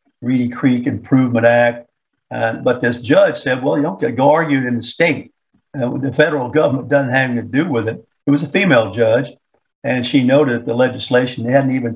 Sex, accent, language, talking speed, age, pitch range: male, American, English, 210 wpm, 60-79, 120-140 Hz